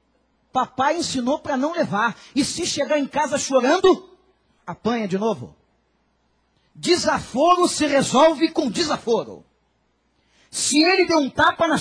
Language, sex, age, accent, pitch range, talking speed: Portuguese, male, 40-59, Brazilian, 215-285 Hz, 125 wpm